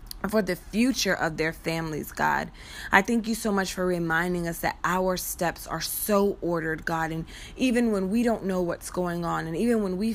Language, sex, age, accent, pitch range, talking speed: English, female, 20-39, American, 165-200 Hz, 205 wpm